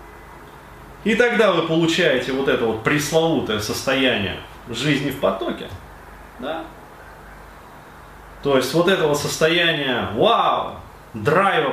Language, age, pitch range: Russian, 30-49, 110-165 Hz